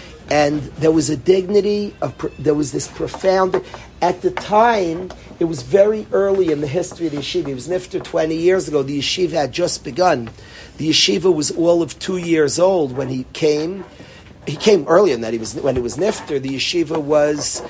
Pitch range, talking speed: 150-190 Hz, 200 wpm